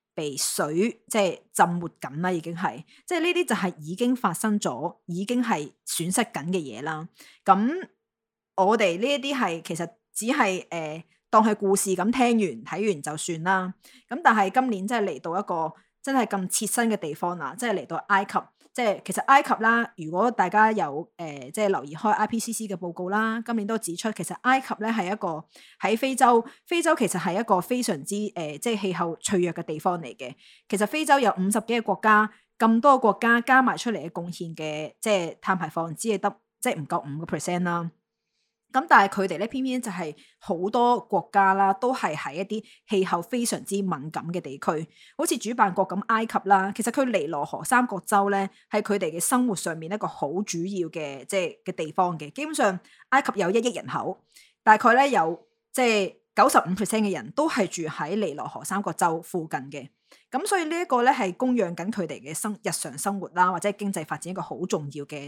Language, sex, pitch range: Chinese, female, 175-230 Hz